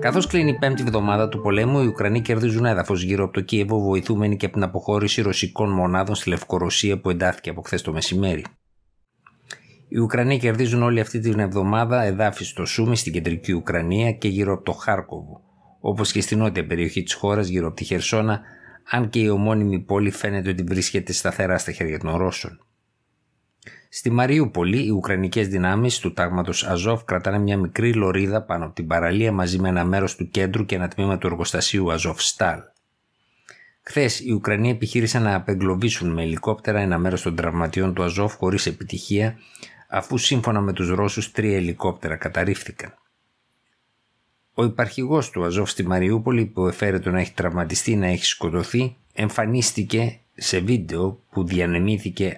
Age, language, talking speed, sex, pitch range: 50-69, Greek, 165 wpm, male, 90-110 Hz